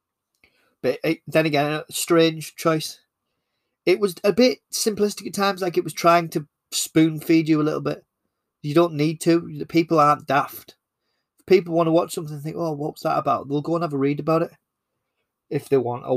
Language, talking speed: English, 210 wpm